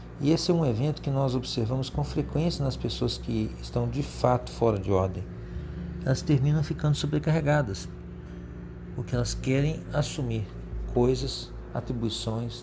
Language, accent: Portuguese, Brazilian